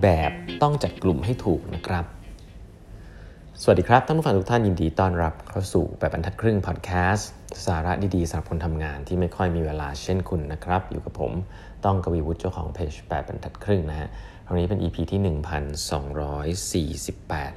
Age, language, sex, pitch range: 30-49, Thai, male, 85-100 Hz